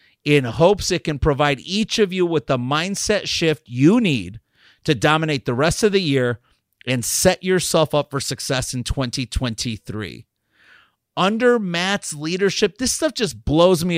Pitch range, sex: 130-175 Hz, male